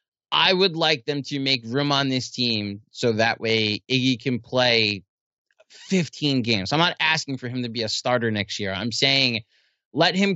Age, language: 20-39, English